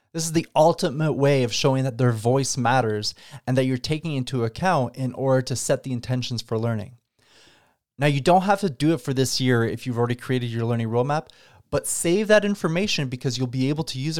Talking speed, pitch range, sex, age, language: 220 wpm, 125-155 Hz, male, 20-39, English